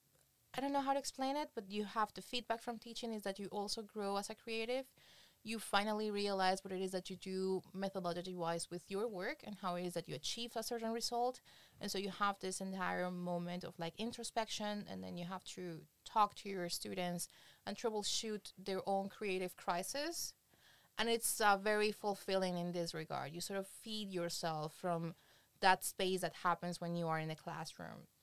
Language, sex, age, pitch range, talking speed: English, female, 20-39, 180-220 Hz, 200 wpm